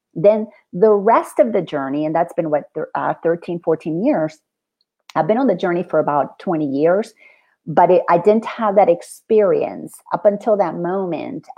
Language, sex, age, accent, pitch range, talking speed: English, female, 40-59, American, 155-215 Hz, 170 wpm